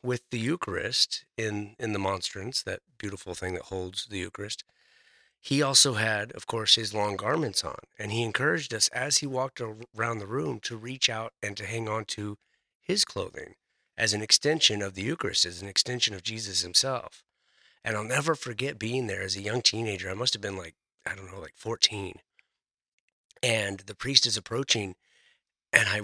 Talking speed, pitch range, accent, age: 190 wpm, 105-135 Hz, American, 30-49